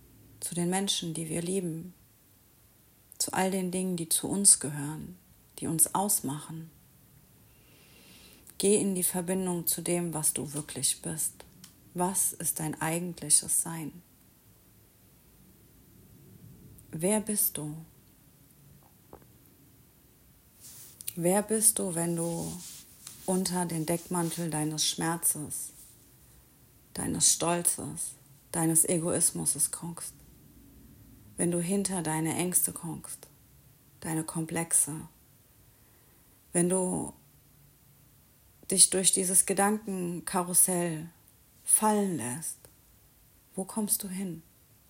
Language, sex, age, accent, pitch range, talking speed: German, female, 40-59, German, 150-185 Hz, 95 wpm